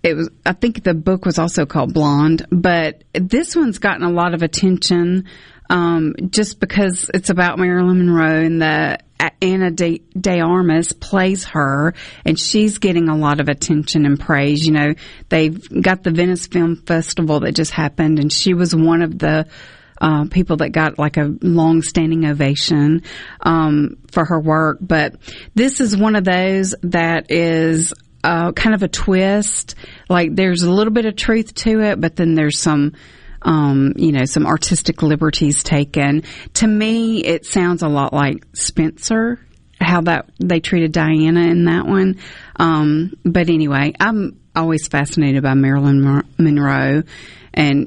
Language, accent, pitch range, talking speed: English, American, 155-185 Hz, 165 wpm